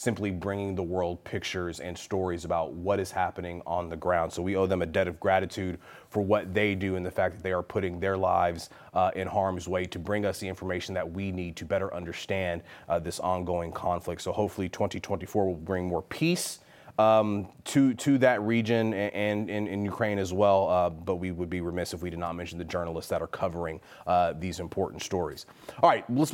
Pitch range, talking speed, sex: 95-130 Hz, 215 wpm, male